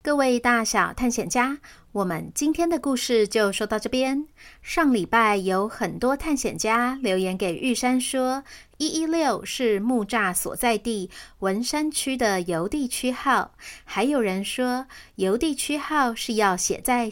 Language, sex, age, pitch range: Chinese, female, 30-49, 210-275 Hz